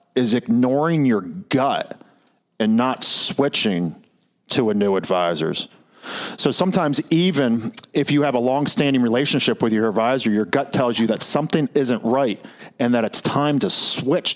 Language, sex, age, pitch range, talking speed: English, male, 40-59, 120-170 Hz, 155 wpm